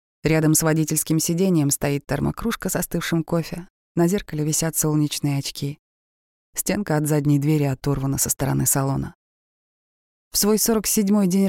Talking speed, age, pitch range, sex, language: 135 wpm, 20-39, 150-180 Hz, female, Russian